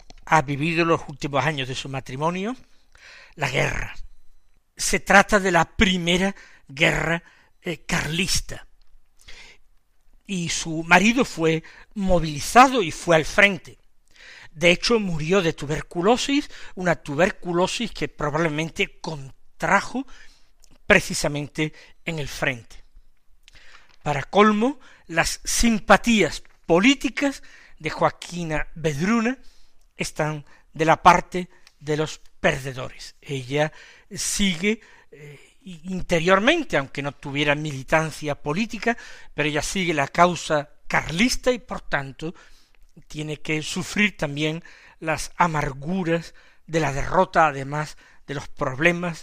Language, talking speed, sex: Spanish, 105 wpm, male